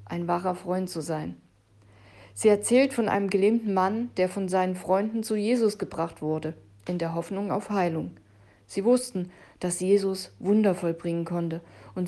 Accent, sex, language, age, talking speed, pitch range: German, female, German, 50-69, 160 wpm, 165-210 Hz